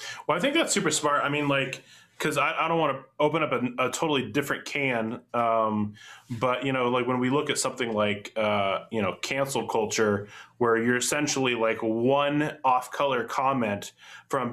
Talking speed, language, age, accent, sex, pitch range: 195 wpm, English, 20-39, American, male, 110-135 Hz